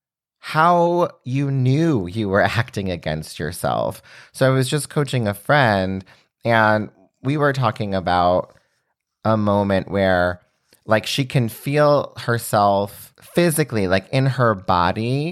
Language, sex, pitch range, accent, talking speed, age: English, male, 95-130 Hz, American, 130 wpm, 30-49